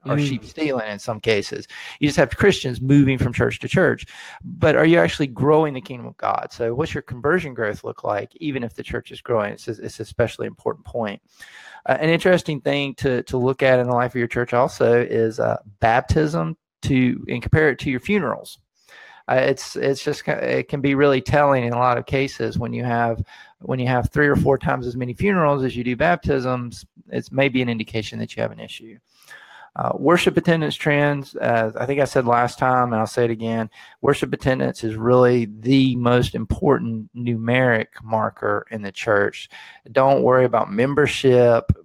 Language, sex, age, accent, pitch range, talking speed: English, male, 40-59, American, 115-140 Hz, 205 wpm